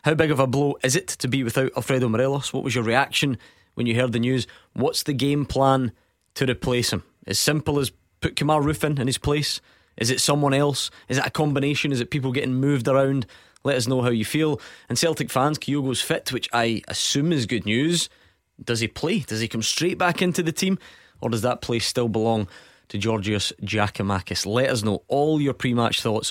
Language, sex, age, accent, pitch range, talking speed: English, male, 20-39, British, 115-140 Hz, 215 wpm